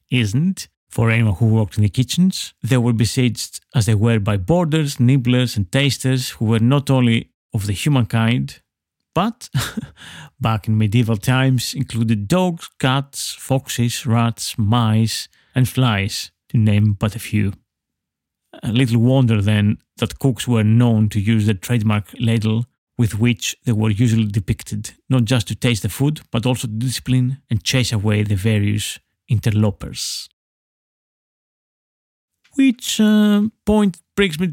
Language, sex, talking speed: English, male, 145 wpm